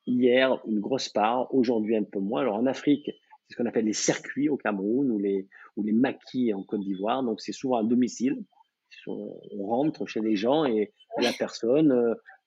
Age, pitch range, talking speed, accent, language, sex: 50-69, 105-135 Hz, 195 wpm, French, French, male